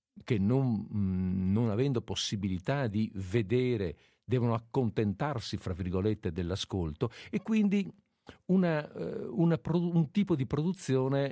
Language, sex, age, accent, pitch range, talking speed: Italian, male, 50-69, native, 105-140 Hz, 95 wpm